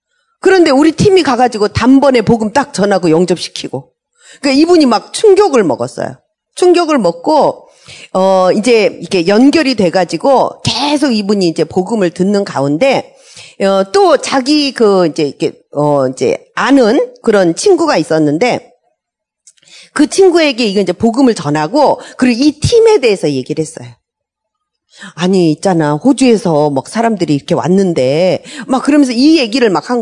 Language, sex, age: Korean, female, 40-59